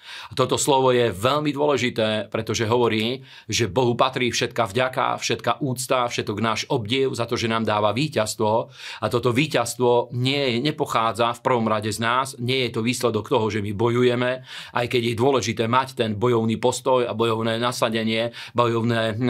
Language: Slovak